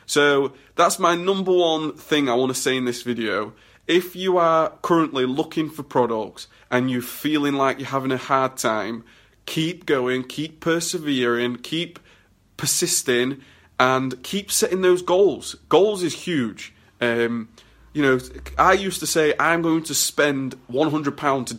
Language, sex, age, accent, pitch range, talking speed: English, male, 20-39, British, 125-160 Hz, 155 wpm